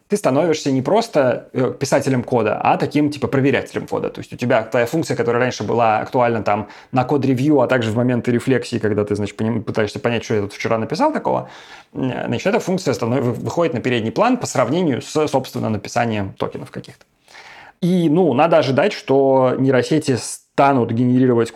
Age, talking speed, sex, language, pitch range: 30-49, 175 wpm, male, Russian, 120-150 Hz